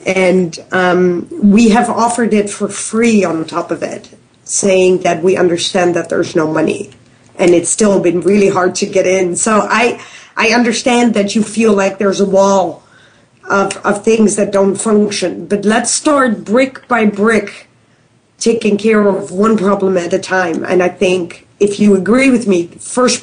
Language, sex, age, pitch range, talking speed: English, female, 40-59, 195-235 Hz, 180 wpm